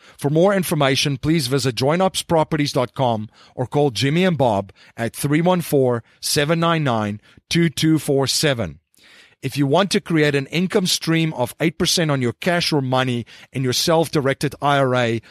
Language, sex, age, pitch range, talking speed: English, male, 40-59, 125-165 Hz, 135 wpm